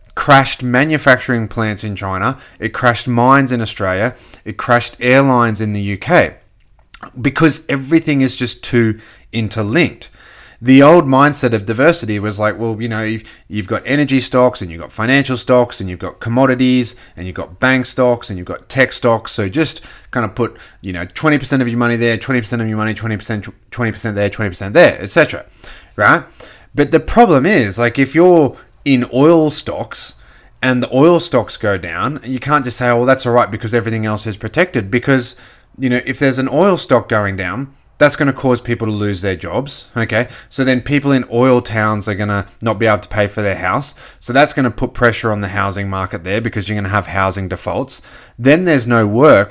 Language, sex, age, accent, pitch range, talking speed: English, male, 30-49, Australian, 105-130 Hz, 205 wpm